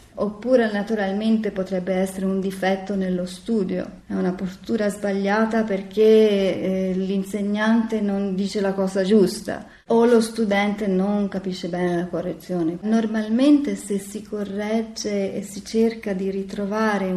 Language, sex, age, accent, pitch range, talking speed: Italian, female, 30-49, native, 190-220 Hz, 130 wpm